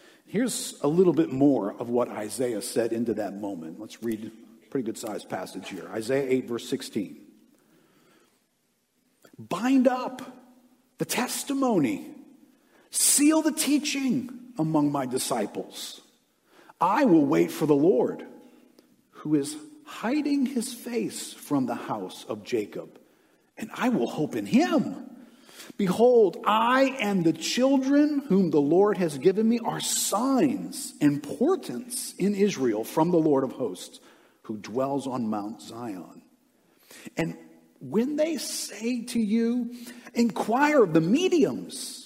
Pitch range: 170-280 Hz